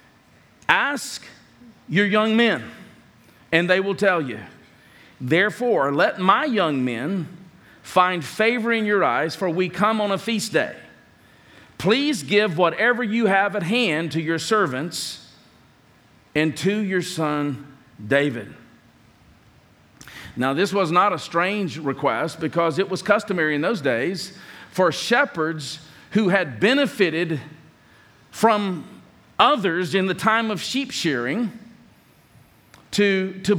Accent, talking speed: American, 125 wpm